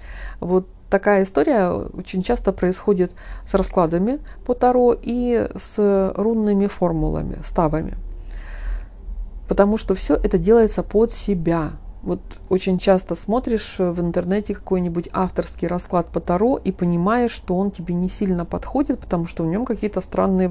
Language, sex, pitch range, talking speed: Russian, female, 175-215 Hz, 140 wpm